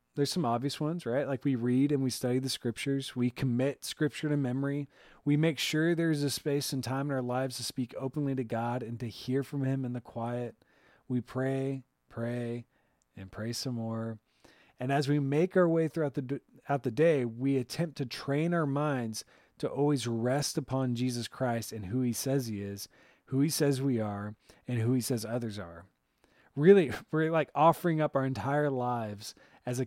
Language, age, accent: English, 30-49, American